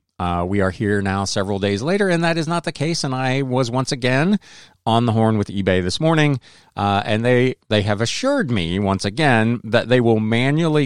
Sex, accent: male, American